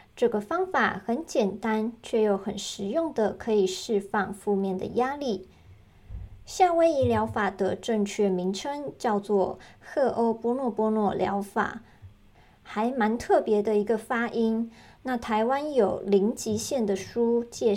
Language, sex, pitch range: Chinese, male, 195-240 Hz